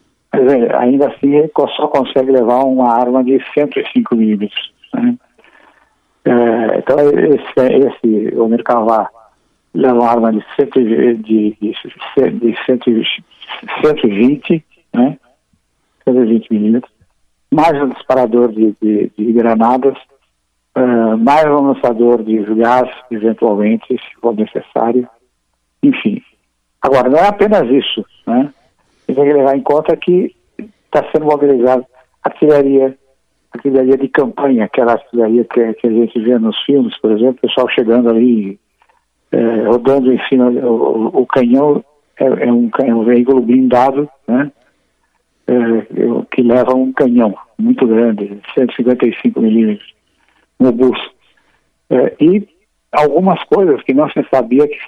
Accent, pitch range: Brazilian, 115-140 Hz